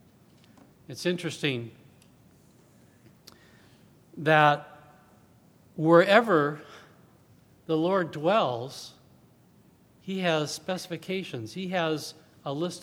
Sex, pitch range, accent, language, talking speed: male, 145-185 Hz, American, English, 65 wpm